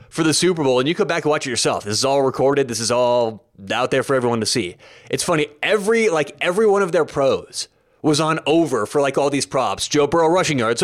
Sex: male